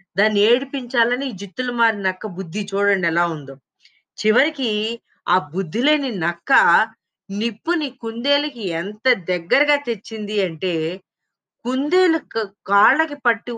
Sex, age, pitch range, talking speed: female, 20-39, 195-275 Hz, 95 wpm